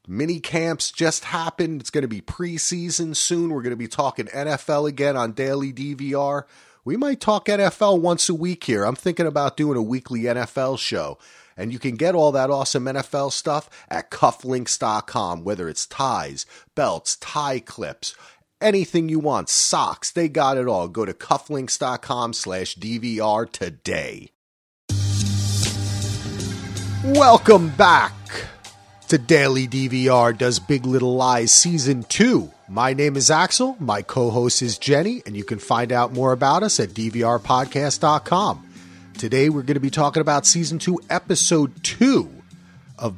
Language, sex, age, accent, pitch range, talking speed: English, male, 30-49, American, 120-165 Hz, 145 wpm